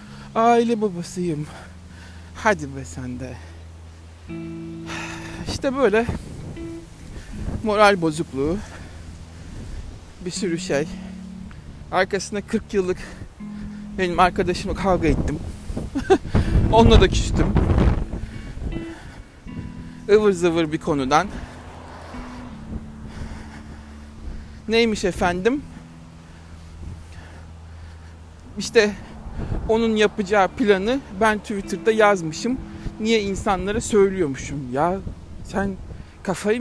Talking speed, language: 65 wpm, Turkish